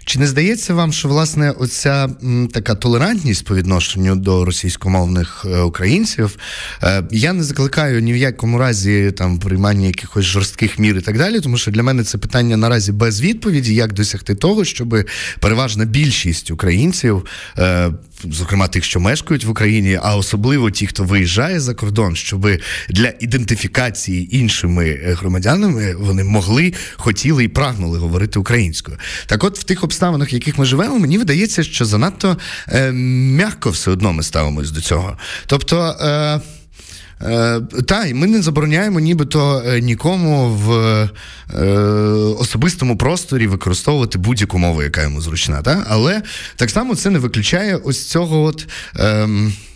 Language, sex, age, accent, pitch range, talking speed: Ukrainian, male, 20-39, native, 95-145 Hz, 150 wpm